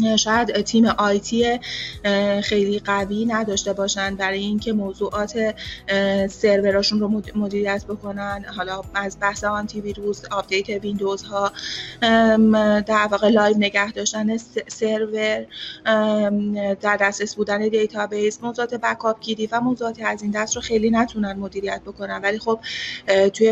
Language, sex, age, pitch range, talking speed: Persian, female, 30-49, 200-225 Hz, 120 wpm